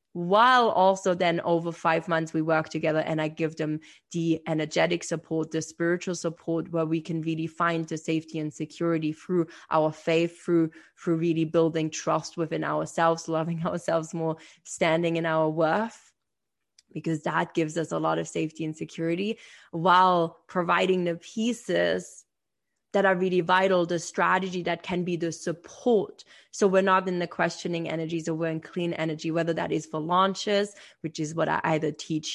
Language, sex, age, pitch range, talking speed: English, female, 20-39, 165-200 Hz, 175 wpm